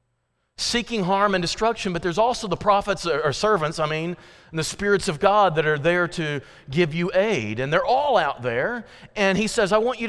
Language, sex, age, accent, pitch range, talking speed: English, male, 40-59, American, 160-220 Hz, 215 wpm